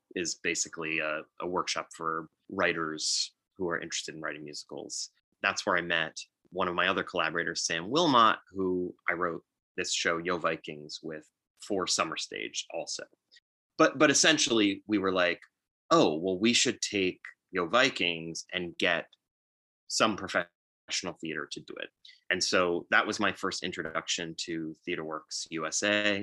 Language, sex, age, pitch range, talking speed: English, male, 30-49, 80-100 Hz, 155 wpm